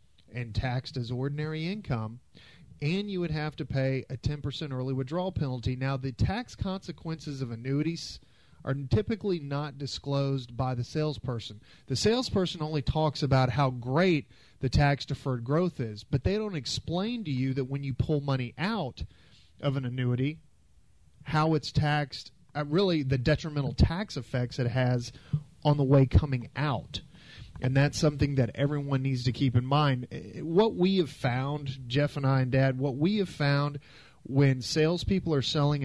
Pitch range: 130-155 Hz